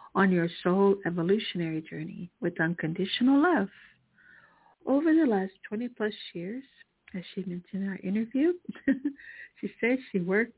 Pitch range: 180-215 Hz